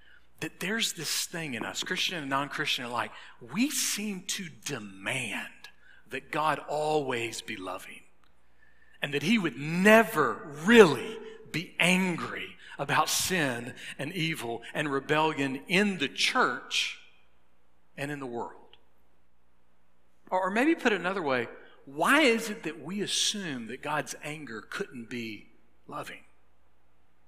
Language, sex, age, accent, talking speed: English, male, 40-59, American, 130 wpm